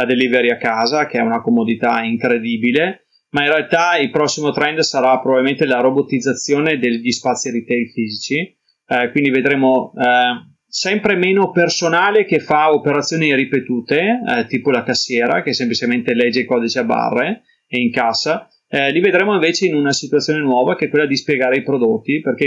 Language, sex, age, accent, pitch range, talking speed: Italian, male, 30-49, native, 125-155 Hz, 170 wpm